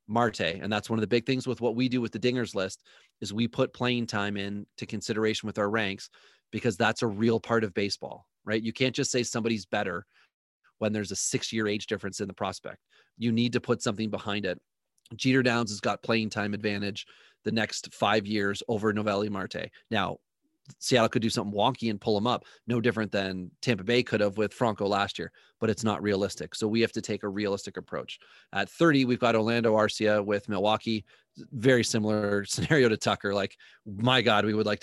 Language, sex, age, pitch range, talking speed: English, male, 30-49, 105-125 Hz, 210 wpm